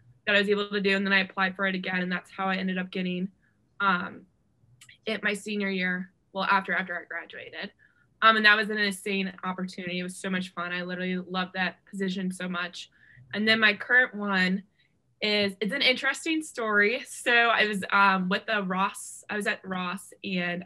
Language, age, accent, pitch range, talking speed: English, 20-39, American, 185-225 Hz, 205 wpm